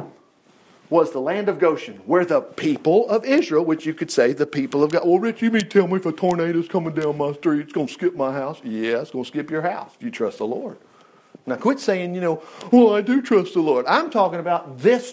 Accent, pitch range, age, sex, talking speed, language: American, 170-245 Hz, 50-69, male, 255 wpm, English